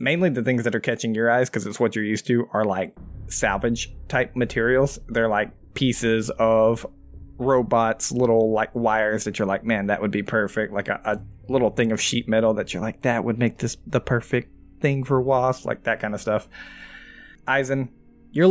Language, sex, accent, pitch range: English, male, American, 105-120 Hz